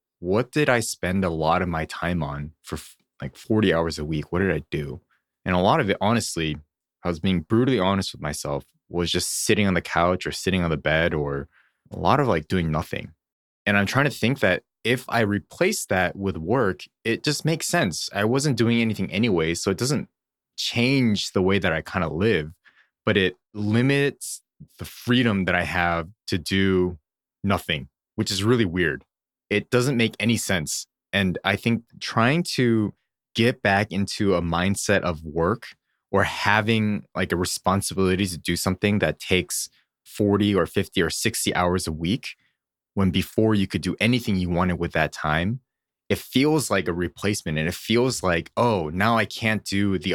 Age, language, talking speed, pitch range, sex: 20-39, English, 190 wpm, 85-110 Hz, male